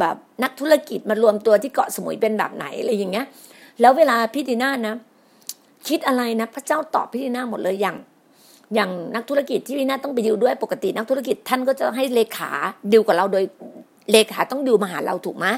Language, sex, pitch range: Thai, female, 215-270 Hz